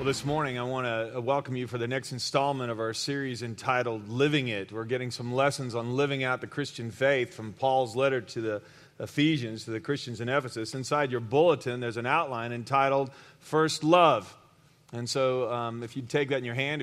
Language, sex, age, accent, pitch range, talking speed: English, male, 40-59, American, 120-150 Hz, 205 wpm